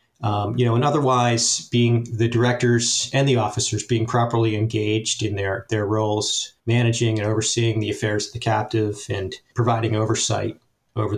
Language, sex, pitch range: English, male, 110-125 Hz